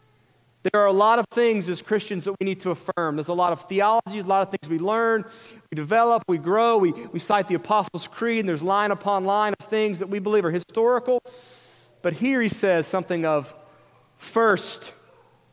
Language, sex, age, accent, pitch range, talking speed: English, male, 30-49, American, 165-220 Hz, 205 wpm